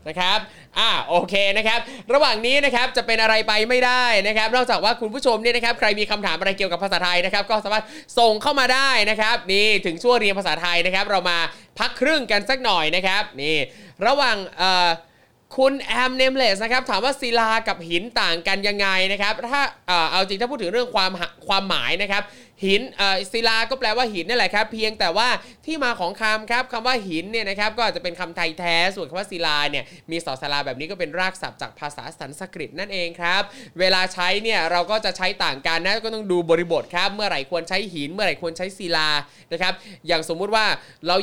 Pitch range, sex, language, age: 180-230 Hz, male, Thai, 20-39